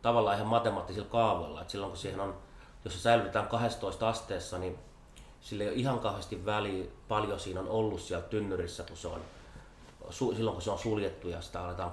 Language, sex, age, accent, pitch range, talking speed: Finnish, male, 30-49, native, 90-110 Hz, 190 wpm